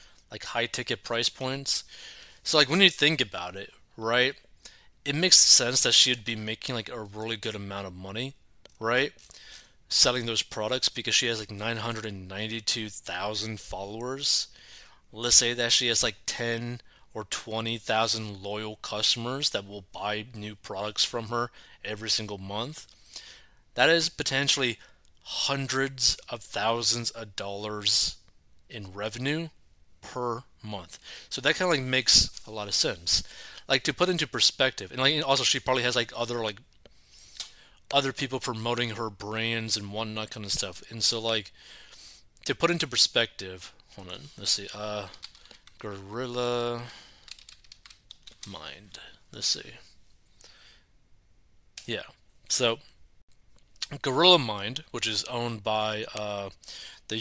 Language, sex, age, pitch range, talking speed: English, male, 20-39, 105-130 Hz, 135 wpm